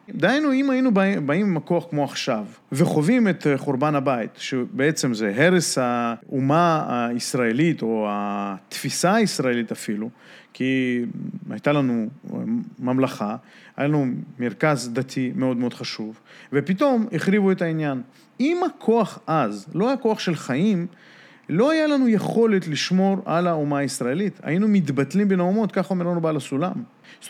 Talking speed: 135 wpm